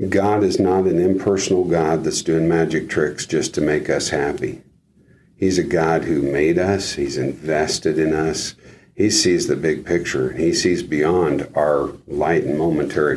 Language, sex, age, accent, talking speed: English, male, 50-69, American, 170 wpm